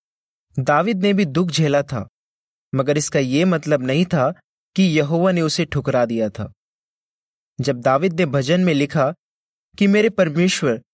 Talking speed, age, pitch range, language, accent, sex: 155 wpm, 20-39, 130-180 Hz, Hindi, native, male